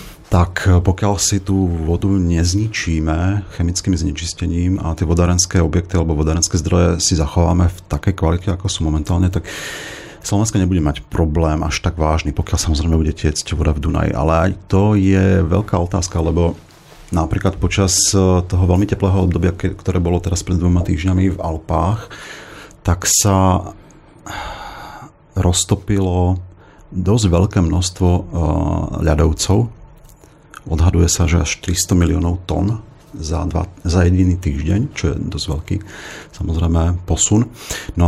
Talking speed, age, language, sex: 130 wpm, 40-59, Slovak, male